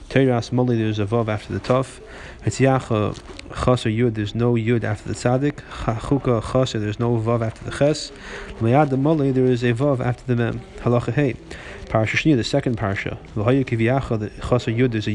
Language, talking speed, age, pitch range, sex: English, 155 wpm, 30-49, 110-130 Hz, male